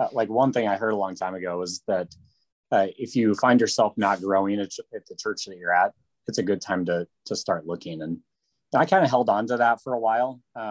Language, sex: English, male